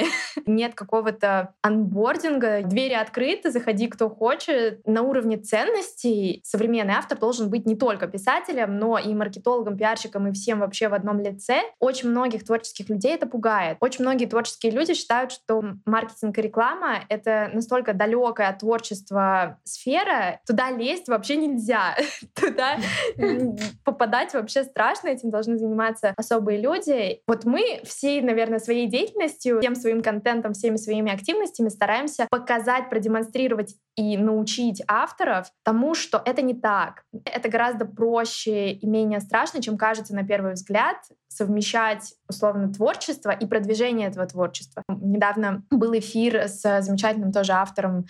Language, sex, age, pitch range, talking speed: Russian, female, 20-39, 210-245 Hz, 135 wpm